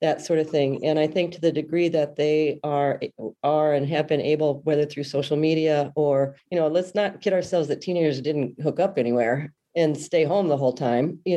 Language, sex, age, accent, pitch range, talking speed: English, female, 40-59, American, 145-175 Hz, 220 wpm